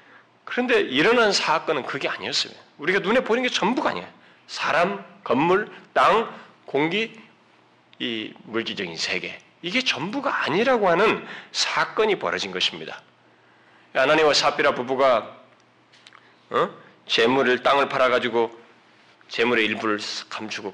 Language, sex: Korean, male